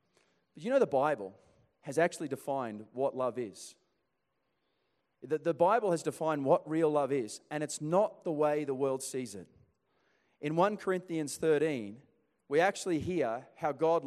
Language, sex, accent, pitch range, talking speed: English, male, Australian, 145-175 Hz, 160 wpm